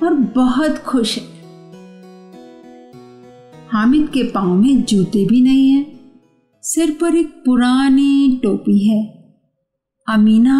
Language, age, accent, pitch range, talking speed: Hindi, 50-69, native, 215-280 Hz, 110 wpm